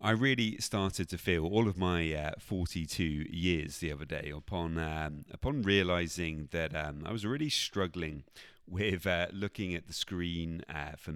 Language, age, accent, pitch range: English, 30-49, British, 80-100 Hz